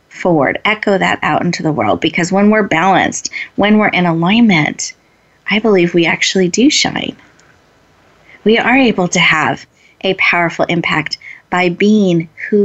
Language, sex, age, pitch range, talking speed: English, female, 30-49, 175-230 Hz, 150 wpm